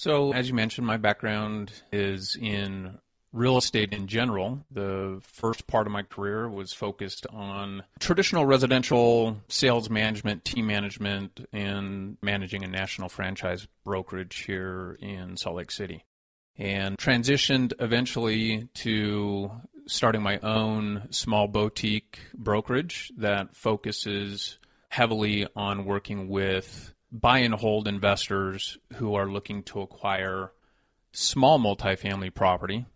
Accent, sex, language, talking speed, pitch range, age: American, male, English, 120 wpm, 95-110 Hz, 30-49